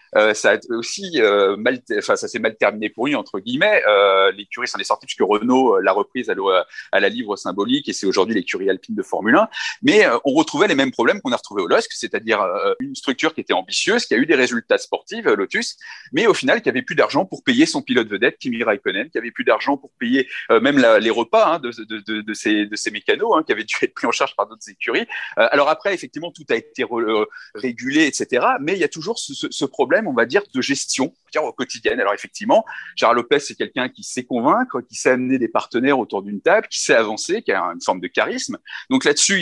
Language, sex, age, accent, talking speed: French, male, 40-59, French, 250 wpm